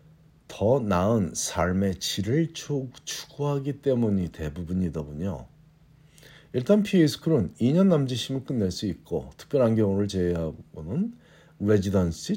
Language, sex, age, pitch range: Korean, male, 50-69, 90-140 Hz